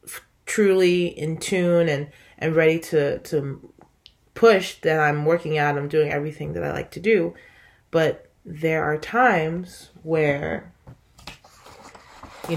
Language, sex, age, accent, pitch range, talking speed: English, female, 20-39, American, 140-165 Hz, 130 wpm